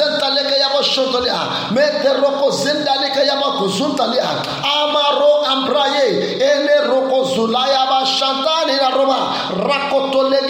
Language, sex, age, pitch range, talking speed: English, male, 50-69, 210-275 Hz, 145 wpm